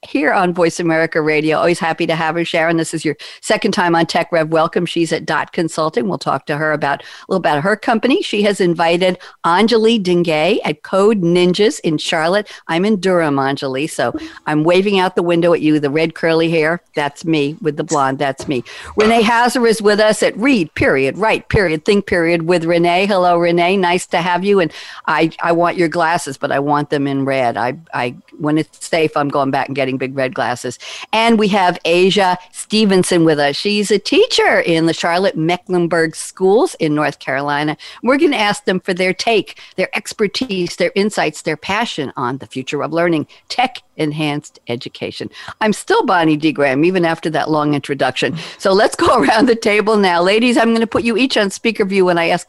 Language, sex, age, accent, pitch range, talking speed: English, female, 50-69, American, 155-205 Hz, 205 wpm